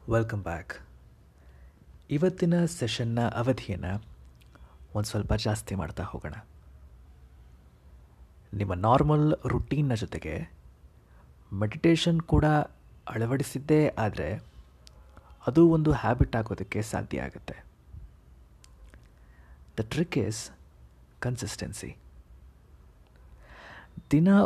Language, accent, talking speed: Kannada, native, 70 wpm